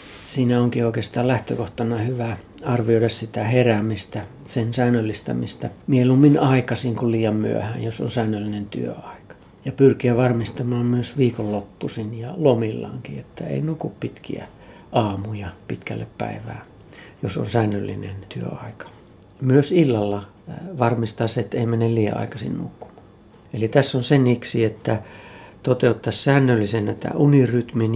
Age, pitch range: 60-79, 105-125 Hz